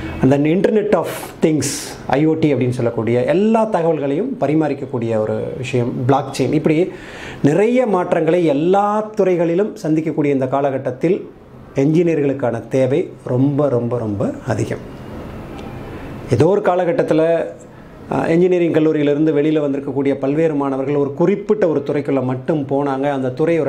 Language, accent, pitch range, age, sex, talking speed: Tamil, native, 135-170 Hz, 30-49, male, 115 wpm